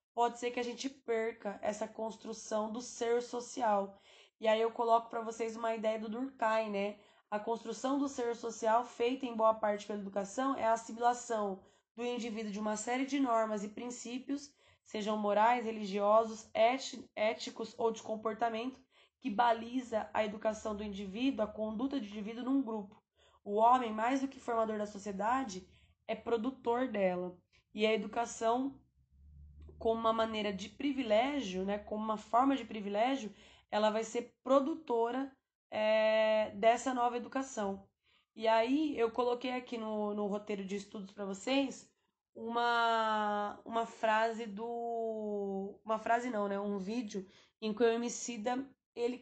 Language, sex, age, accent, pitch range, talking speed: Portuguese, female, 10-29, Brazilian, 215-240 Hz, 150 wpm